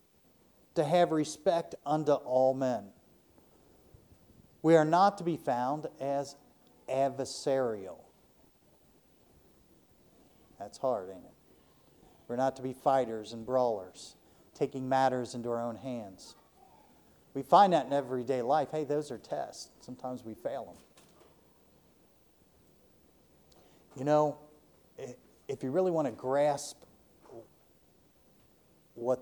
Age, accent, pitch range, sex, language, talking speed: 50-69, American, 125-150 Hz, male, English, 110 wpm